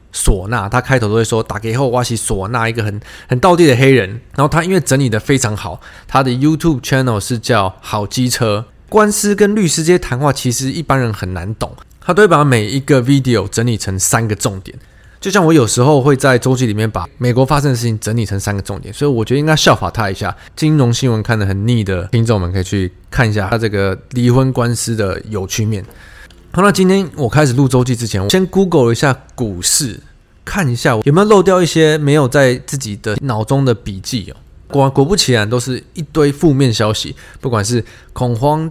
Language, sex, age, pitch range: Chinese, male, 20-39, 110-150 Hz